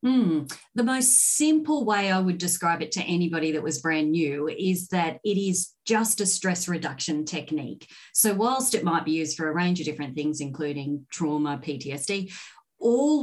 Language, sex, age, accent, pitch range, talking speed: English, female, 30-49, Australian, 155-195 Hz, 180 wpm